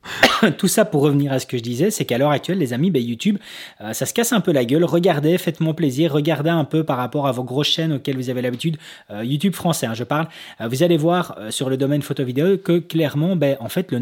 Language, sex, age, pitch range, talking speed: French, male, 20-39, 125-165 Hz, 275 wpm